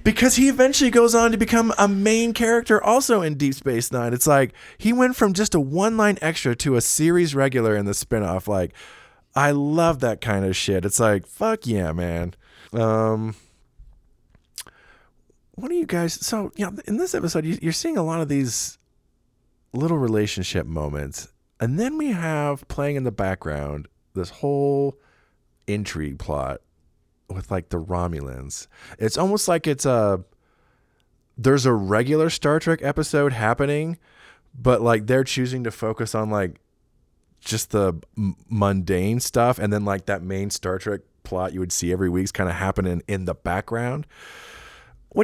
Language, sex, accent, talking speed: English, male, American, 165 wpm